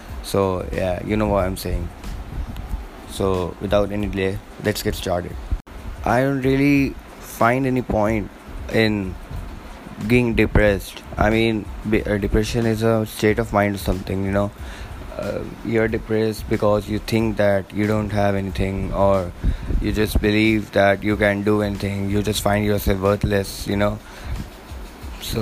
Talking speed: 150 wpm